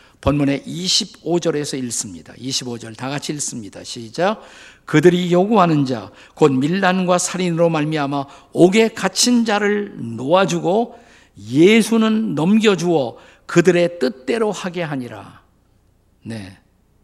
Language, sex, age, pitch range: Korean, male, 50-69, 130-190 Hz